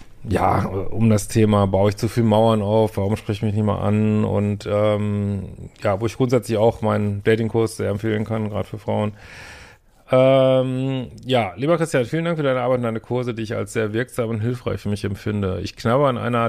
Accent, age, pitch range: German, 40-59, 105-130 Hz